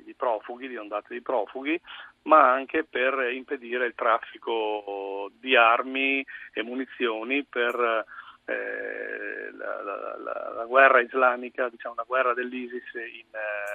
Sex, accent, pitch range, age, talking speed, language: male, native, 110-140 Hz, 40-59, 115 wpm, Italian